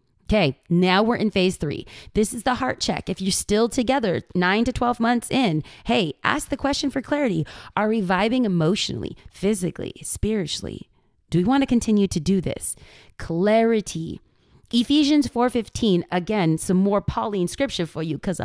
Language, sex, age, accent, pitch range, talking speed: English, female, 30-49, American, 165-235 Hz, 165 wpm